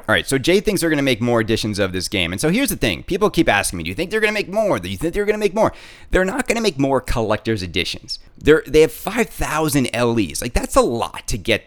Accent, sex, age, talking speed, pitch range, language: American, male, 30-49, 295 wpm, 115-165 Hz, English